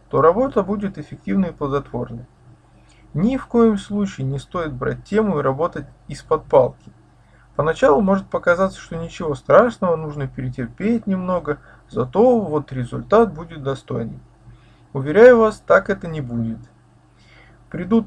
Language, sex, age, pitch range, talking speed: Russian, male, 20-39, 140-200 Hz, 130 wpm